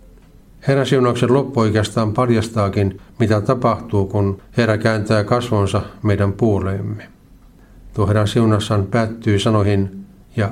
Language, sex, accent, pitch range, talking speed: Finnish, male, native, 100-115 Hz, 110 wpm